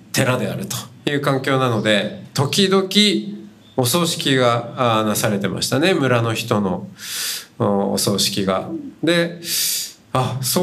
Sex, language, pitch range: male, Japanese, 110-170 Hz